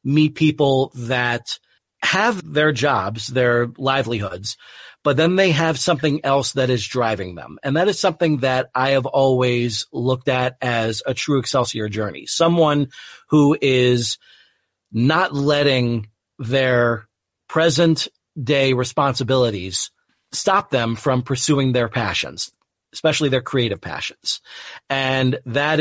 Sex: male